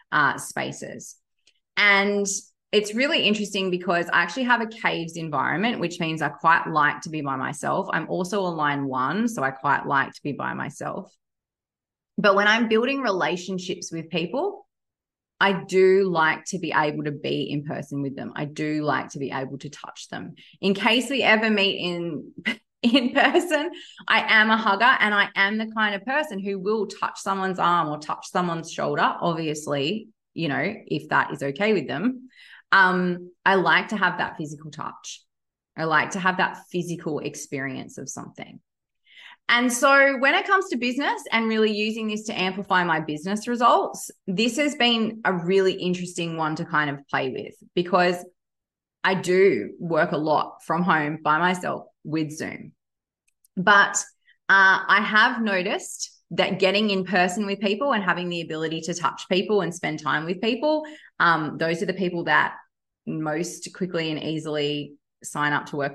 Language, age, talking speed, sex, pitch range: English, 20-39, 175 wpm, female, 160-215 Hz